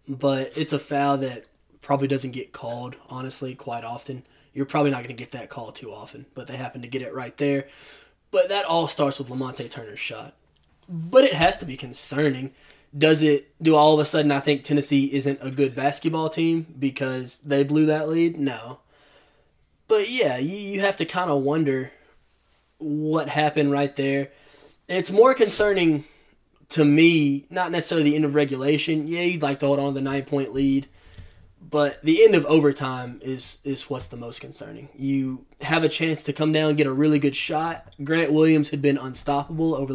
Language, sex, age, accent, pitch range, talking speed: English, male, 20-39, American, 135-155 Hz, 195 wpm